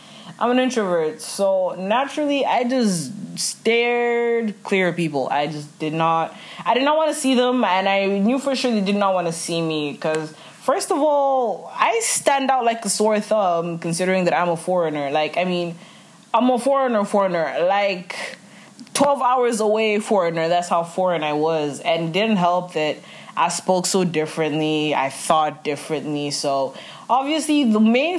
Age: 20-39